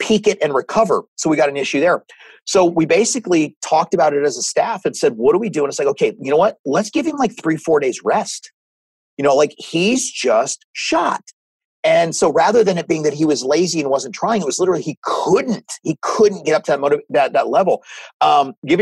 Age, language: 40-59, English